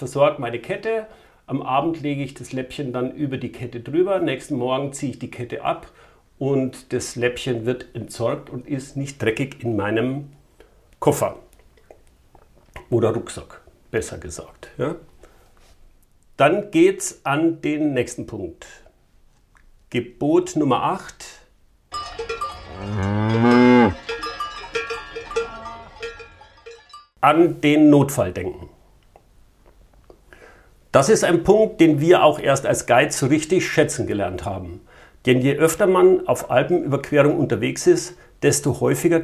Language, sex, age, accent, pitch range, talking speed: German, male, 50-69, German, 125-185 Hz, 115 wpm